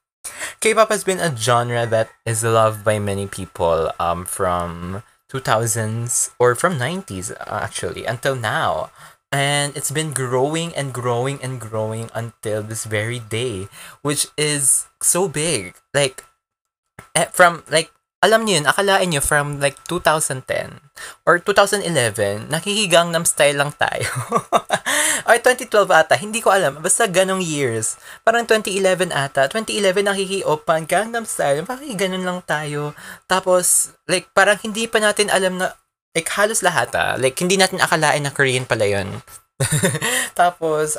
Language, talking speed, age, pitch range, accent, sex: Filipino, 140 wpm, 20-39, 120-185 Hz, native, male